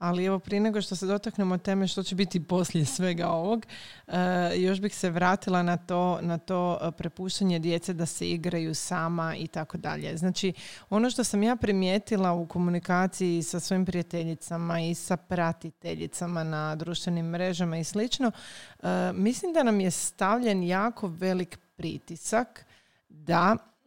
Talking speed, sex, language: 140 wpm, female, Croatian